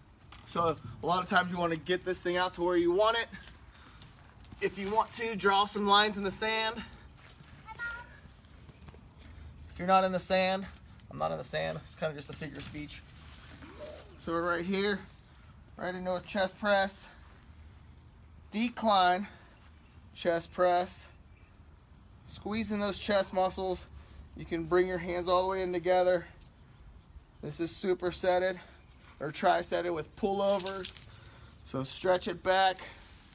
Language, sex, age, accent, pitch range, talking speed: English, male, 20-39, American, 165-225 Hz, 150 wpm